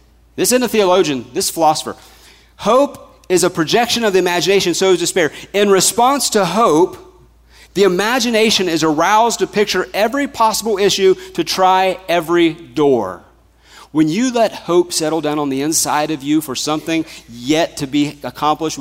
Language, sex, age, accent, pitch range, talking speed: English, male, 40-59, American, 135-190 Hz, 160 wpm